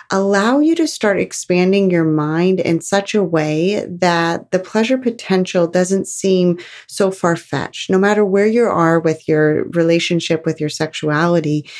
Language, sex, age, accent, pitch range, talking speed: English, female, 30-49, American, 150-195 Hz, 155 wpm